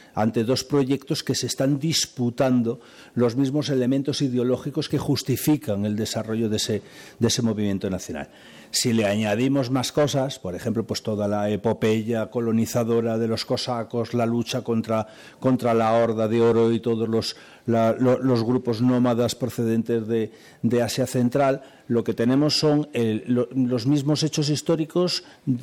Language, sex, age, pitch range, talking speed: Spanish, male, 60-79, 115-140 Hz, 145 wpm